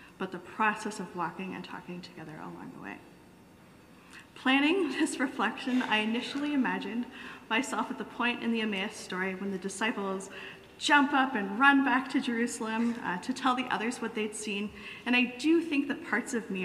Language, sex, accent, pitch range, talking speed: English, female, American, 200-255 Hz, 185 wpm